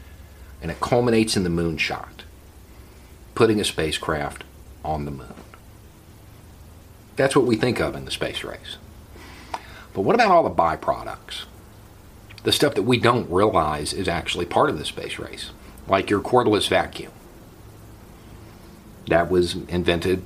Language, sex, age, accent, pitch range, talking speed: English, male, 50-69, American, 80-105 Hz, 140 wpm